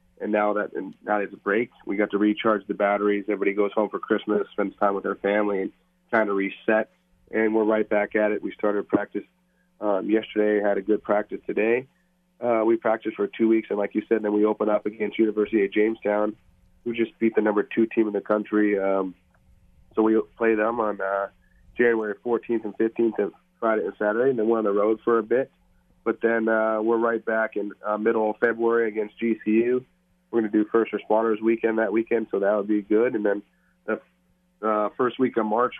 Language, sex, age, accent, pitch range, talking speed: English, male, 30-49, American, 105-115 Hz, 220 wpm